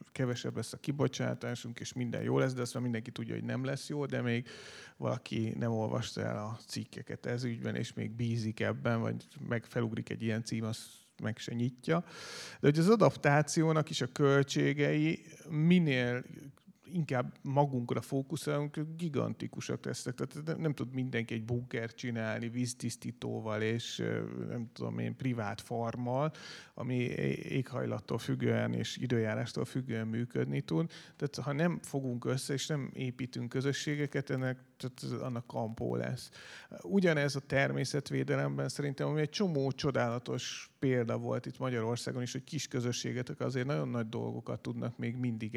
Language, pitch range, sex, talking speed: Hungarian, 115-150 Hz, male, 145 wpm